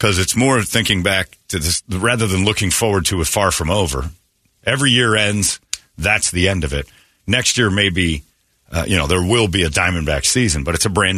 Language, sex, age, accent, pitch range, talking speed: English, male, 40-59, American, 85-110 Hz, 215 wpm